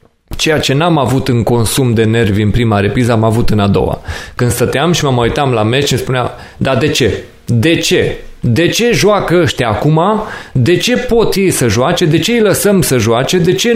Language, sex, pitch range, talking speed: Romanian, male, 120-170 Hz, 215 wpm